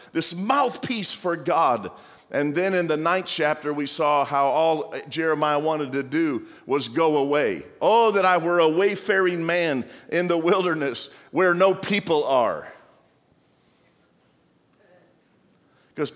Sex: male